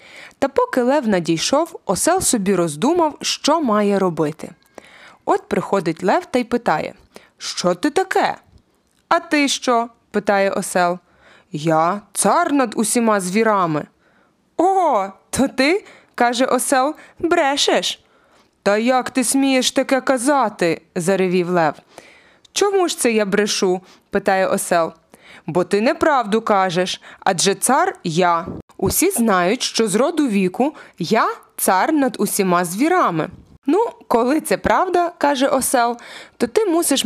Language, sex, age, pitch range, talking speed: Ukrainian, female, 20-39, 195-285 Hz, 140 wpm